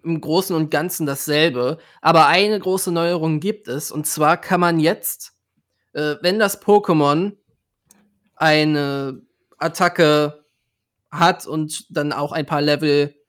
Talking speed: 130 wpm